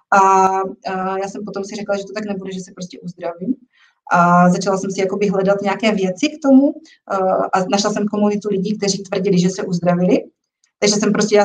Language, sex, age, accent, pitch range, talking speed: Czech, female, 30-49, native, 185-215 Hz, 205 wpm